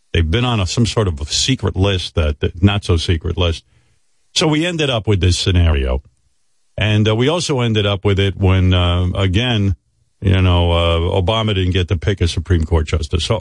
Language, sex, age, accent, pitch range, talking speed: English, male, 50-69, American, 90-125 Hz, 200 wpm